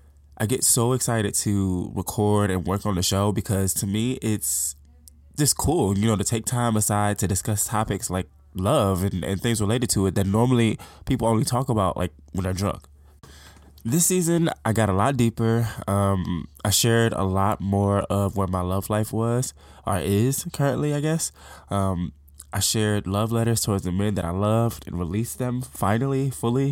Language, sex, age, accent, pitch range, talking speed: English, male, 20-39, American, 90-110 Hz, 190 wpm